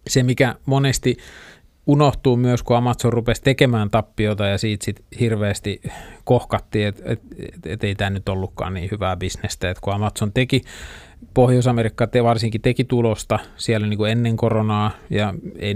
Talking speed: 150 wpm